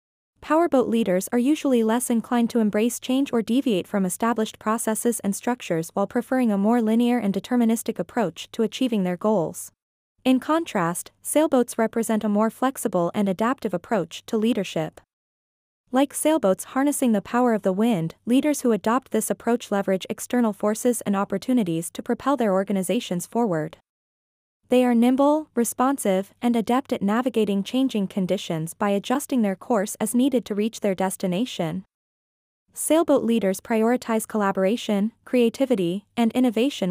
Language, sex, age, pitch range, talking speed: English, female, 20-39, 195-250 Hz, 145 wpm